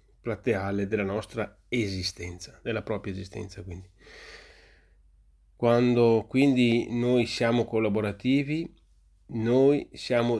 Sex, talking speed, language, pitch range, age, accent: male, 85 wpm, Italian, 100-130 Hz, 30-49, native